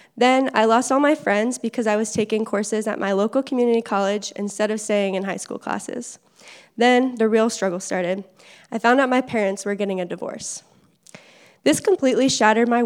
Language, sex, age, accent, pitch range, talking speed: English, female, 10-29, American, 195-240 Hz, 190 wpm